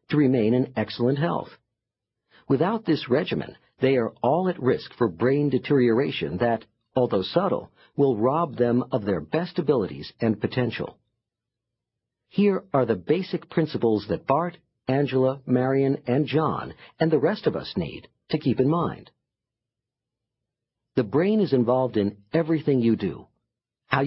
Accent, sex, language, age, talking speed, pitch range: American, male, English, 50-69, 145 wpm, 120-155 Hz